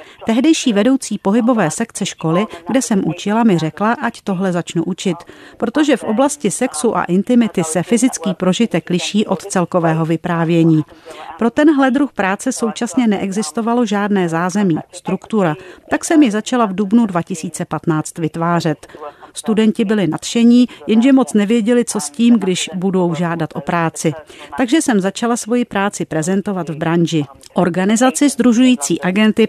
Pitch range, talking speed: 170-235 Hz, 140 wpm